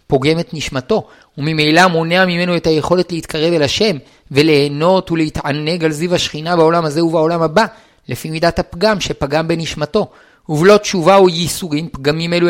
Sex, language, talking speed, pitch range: male, Hebrew, 150 wpm, 155-185 Hz